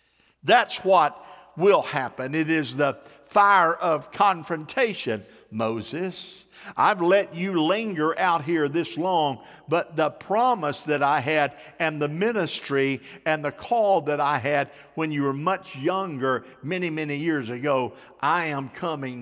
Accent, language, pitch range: American, English, 140-170 Hz